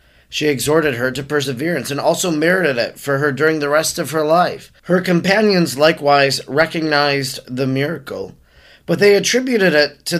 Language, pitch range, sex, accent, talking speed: English, 130-170 Hz, male, American, 165 wpm